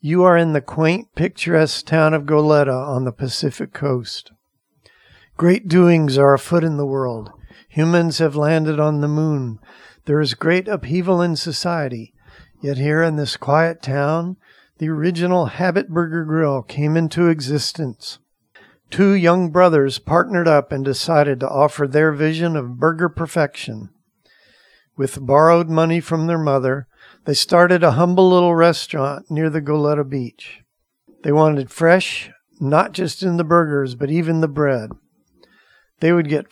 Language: English